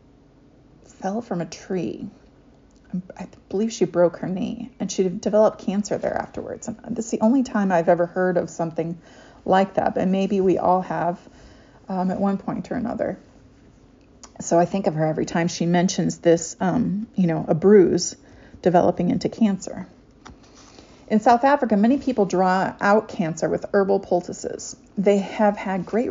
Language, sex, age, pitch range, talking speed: English, female, 30-49, 180-220 Hz, 165 wpm